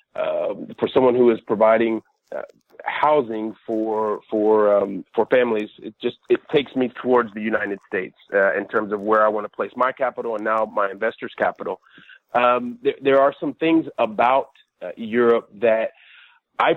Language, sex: English, male